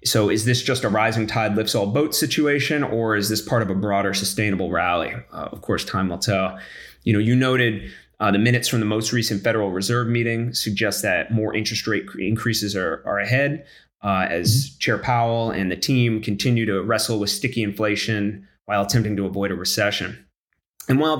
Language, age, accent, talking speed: English, 30-49, American, 200 wpm